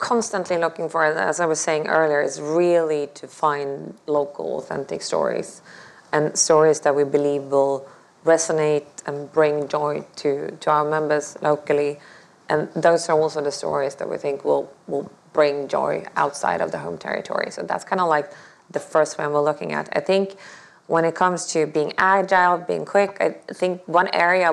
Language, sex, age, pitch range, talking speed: English, female, 20-39, 150-170 Hz, 180 wpm